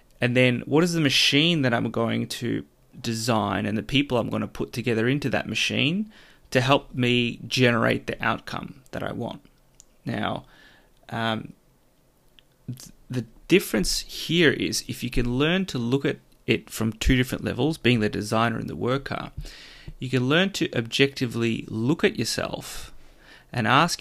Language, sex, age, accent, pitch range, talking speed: English, male, 30-49, Australian, 115-135 Hz, 160 wpm